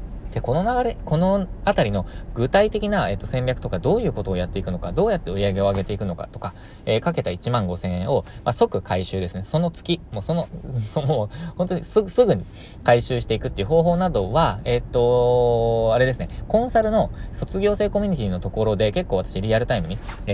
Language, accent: Japanese, native